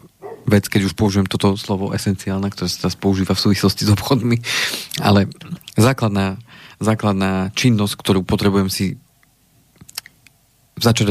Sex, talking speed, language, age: male, 120 wpm, Slovak, 40-59